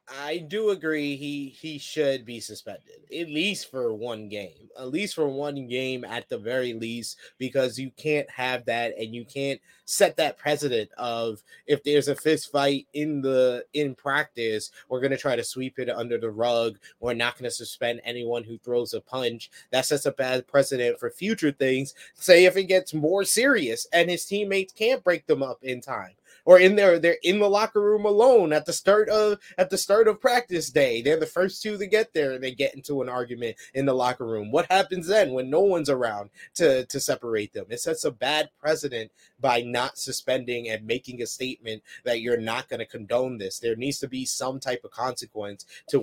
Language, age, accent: English, 20-39, American